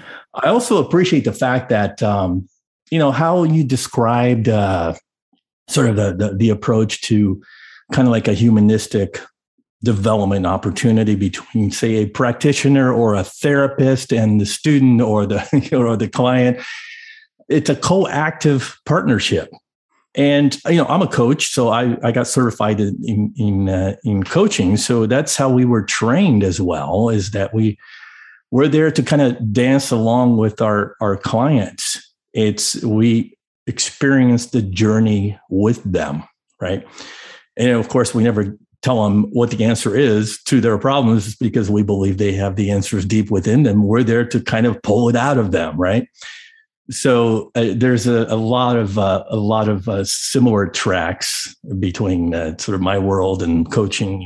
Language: English